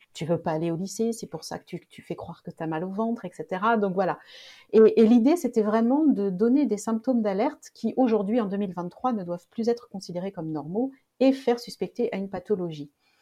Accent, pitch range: French, 185-240 Hz